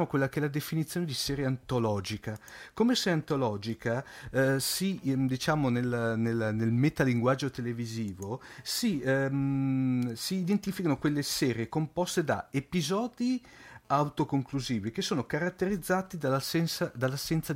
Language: Italian